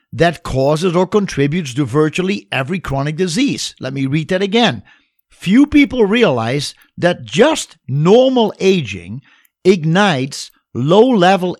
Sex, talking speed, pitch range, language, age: male, 120 wpm, 135-195 Hz, English, 50-69